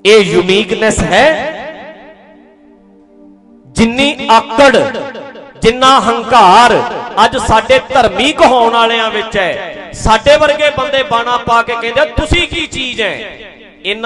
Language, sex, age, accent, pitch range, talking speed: English, male, 40-59, Indian, 210-265 Hz, 120 wpm